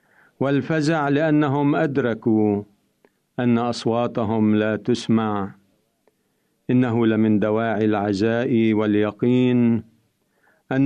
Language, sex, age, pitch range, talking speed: Arabic, male, 50-69, 110-145 Hz, 70 wpm